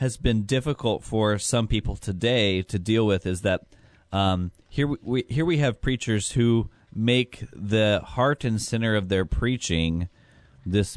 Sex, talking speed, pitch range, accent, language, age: male, 165 wpm, 90-115 Hz, American, English, 30-49